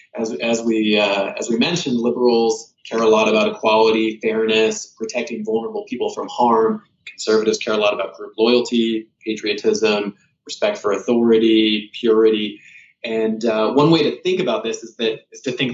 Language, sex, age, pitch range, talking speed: English, male, 20-39, 110-165 Hz, 170 wpm